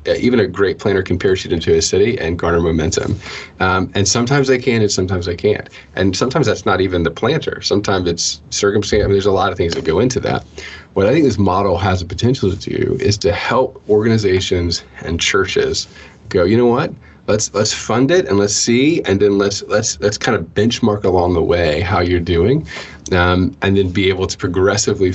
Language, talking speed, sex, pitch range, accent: English, 215 wpm, male, 85-110 Hz, American